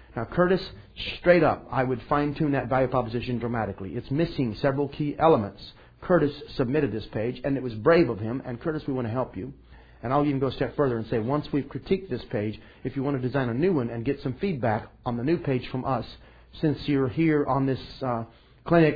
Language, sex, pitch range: English, male, 115-150 Hz